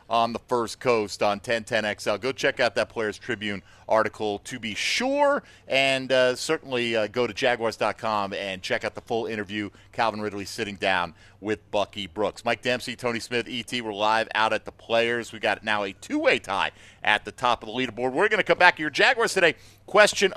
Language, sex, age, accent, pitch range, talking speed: English, male, 40-59, American, 110-145 Hz, 210 wpm